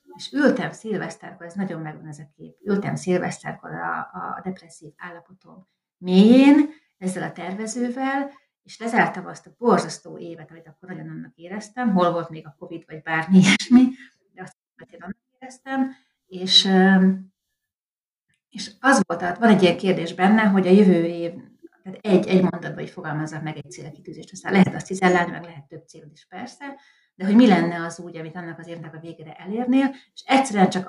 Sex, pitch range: female, 170-225 Hz